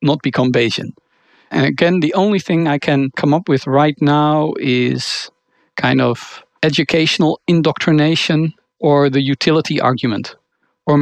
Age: 50-69